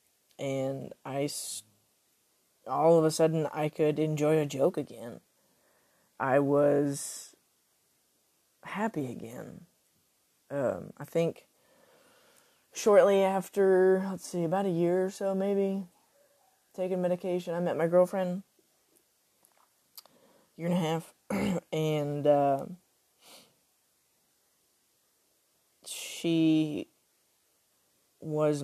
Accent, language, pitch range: American, English, 145-175 Hz